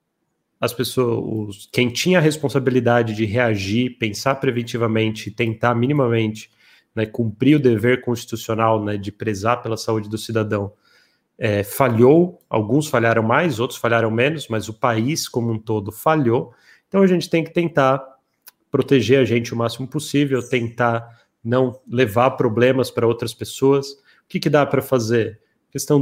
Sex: male